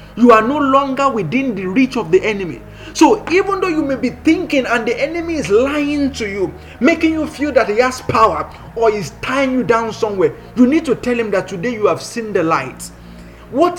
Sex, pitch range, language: male, 225-300 Hz, English